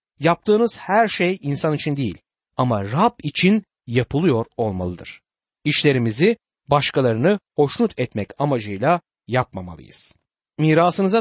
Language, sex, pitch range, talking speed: Turkish, male, 125-185 Hz, 95 wpm